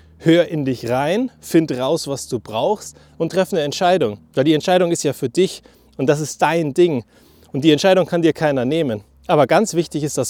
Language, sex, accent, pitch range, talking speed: German, male, German, 130-170 Hz, 215 wpm